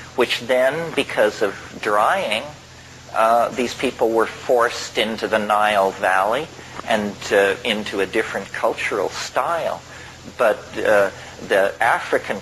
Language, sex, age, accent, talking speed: English, male, 40-59, American, 120 wpm